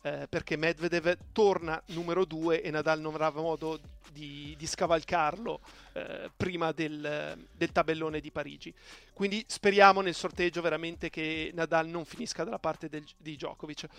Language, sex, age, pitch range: Italian, male, 40-59, 160-195 Hz